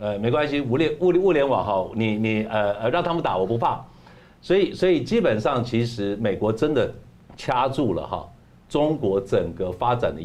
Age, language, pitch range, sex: 50-69, Chinese, 100-125 Hz, male